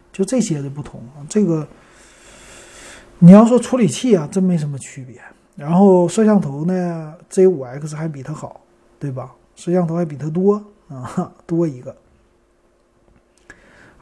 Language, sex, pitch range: Chinese, male, 170-230 Hz